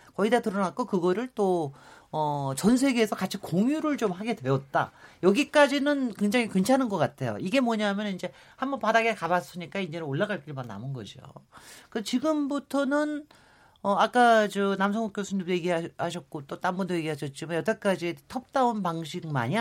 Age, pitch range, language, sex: 40-59, 150-225 Hz, Korean, male